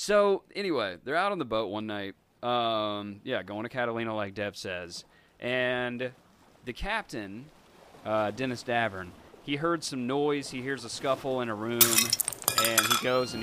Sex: male